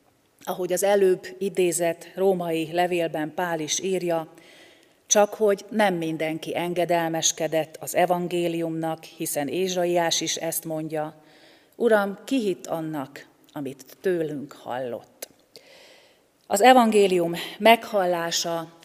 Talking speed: 100 wpm